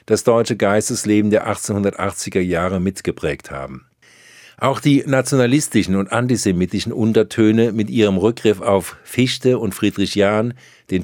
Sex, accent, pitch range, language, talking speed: male, German, 100-120 Hz, German, 125 wpm